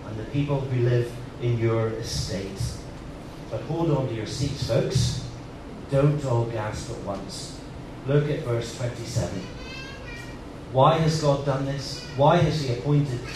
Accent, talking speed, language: British, 145 wpm, English